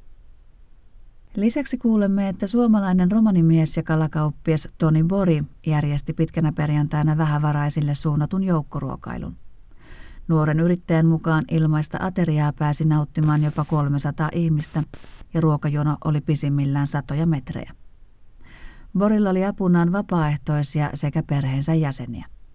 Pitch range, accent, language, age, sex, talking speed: 150-175 Hz, native, Finnish, 40-59, female, 100 wpm